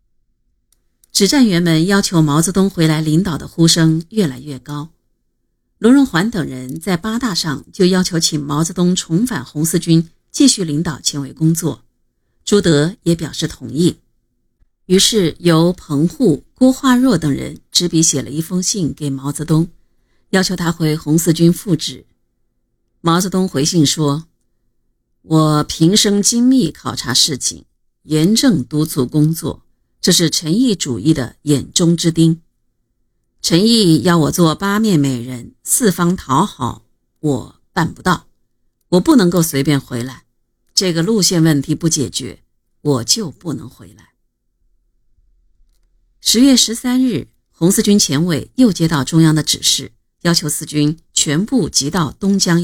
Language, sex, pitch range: Chinese, female, 135-180 Hz